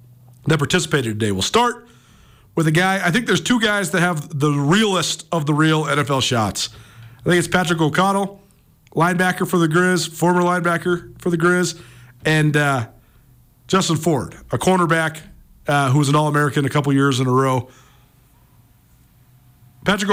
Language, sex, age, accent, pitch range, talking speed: English, male, 40-59, American, 140-180 Hz, 160 wpm